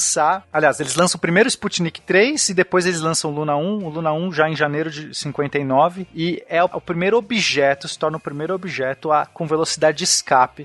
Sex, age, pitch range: male, 30-49, 145-210 Hz